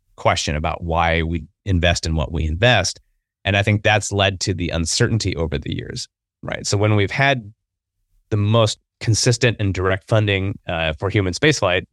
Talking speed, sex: 175 wpm, male